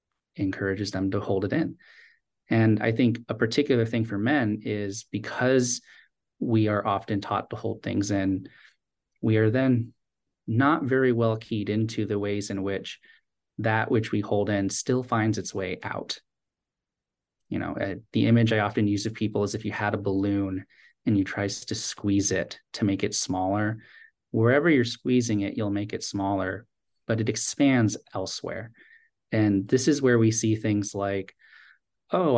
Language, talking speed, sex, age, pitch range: English, 170 wpm, male, 30-49, 100-115 Hz